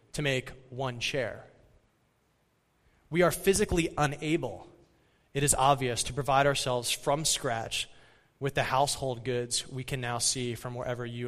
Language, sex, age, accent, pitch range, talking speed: English, male, 20-39, American, 125-160 Hz, 145 wpm